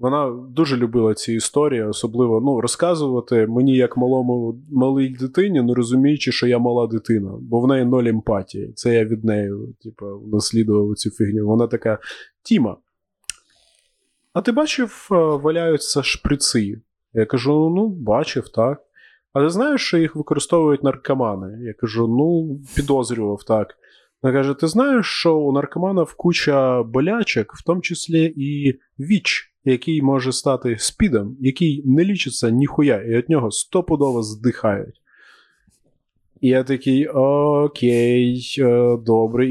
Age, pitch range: 20-39, 115-155 Hz